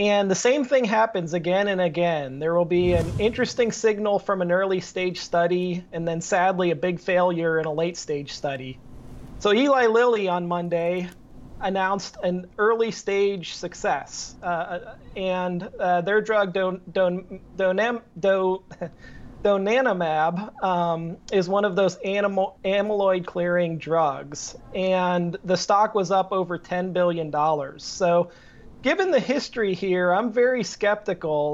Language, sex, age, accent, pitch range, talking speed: English, male, 30-49, American, 170-205 Hz, 150 wpm